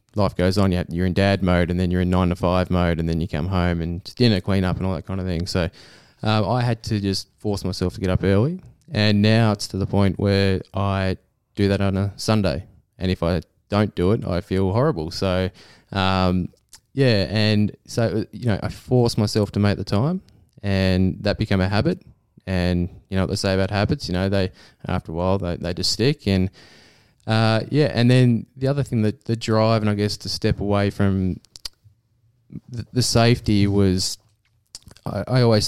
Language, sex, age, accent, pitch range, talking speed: English, male, 20-39, Australian, 95-110 Hz, 215 wpm